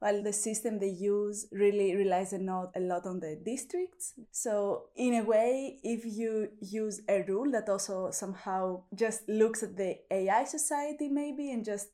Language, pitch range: English, 185-225 Hz